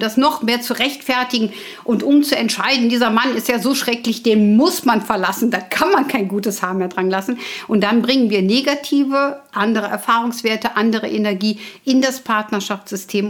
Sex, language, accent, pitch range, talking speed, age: female, German, German, 210-260 Hz, 180 wpm, 50-69